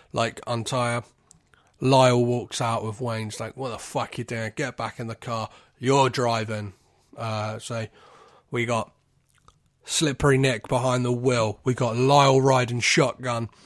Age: 30-49